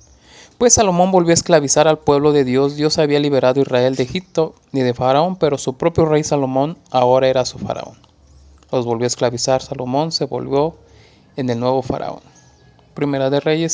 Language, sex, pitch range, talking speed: Spanish, male, 125-160 Hz, 185 wpm